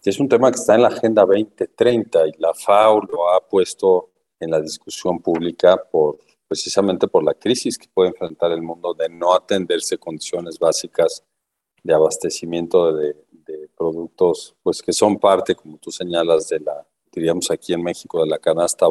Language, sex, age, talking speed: Spanish, male, 50-69, 175 wpm